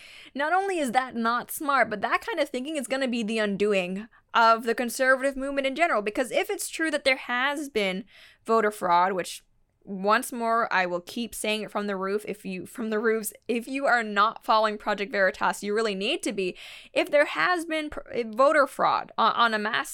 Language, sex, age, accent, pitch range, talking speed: English, female, 10-29, American, 200-275 Hz, 210 wpm